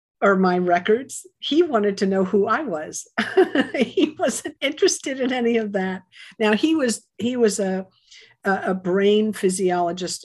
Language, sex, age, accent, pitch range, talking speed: English, female, 50-69, American, 170-205 Hz, 150 wpm